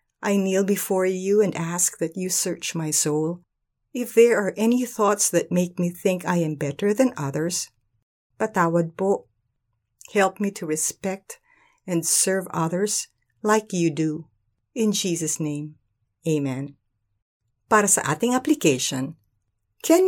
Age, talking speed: 50-69, 135 wpm